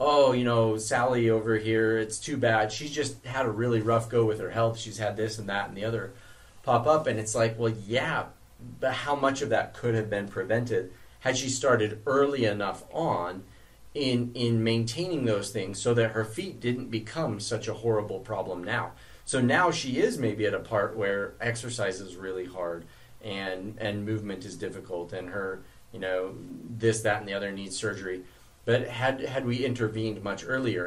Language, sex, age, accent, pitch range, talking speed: English, male, 30-49, American, 105-125 Hz, 195 wpm